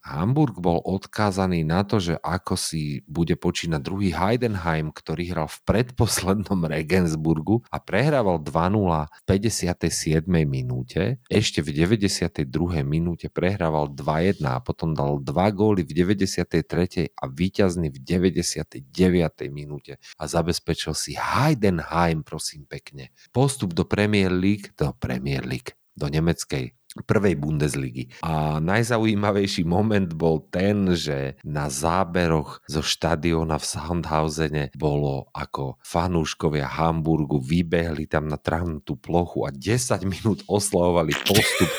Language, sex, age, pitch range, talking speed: Slovak, male, 40-59, 80-100 Hz, 120 wpm